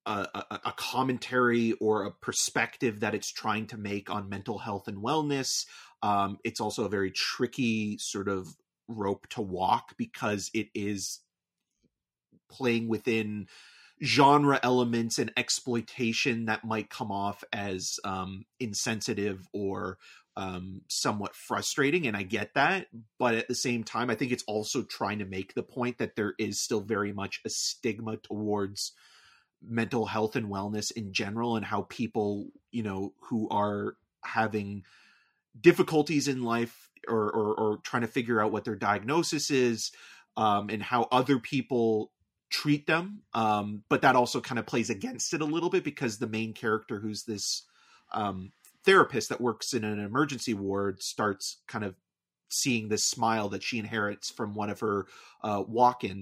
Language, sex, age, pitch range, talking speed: English, male, 30-49, 100-120 Hz, 160 wpm